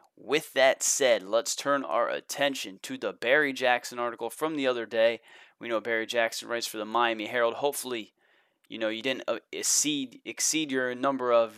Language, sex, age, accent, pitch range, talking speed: English, male, 20-39, American, 120-135 Hz, 175 wpm